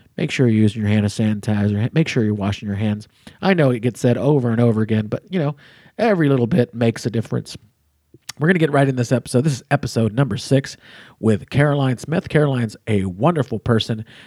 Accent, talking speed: American, 215 wpm